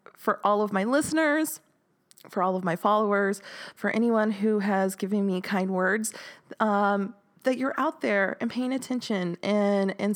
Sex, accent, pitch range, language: female, American, 200-255 Hz, English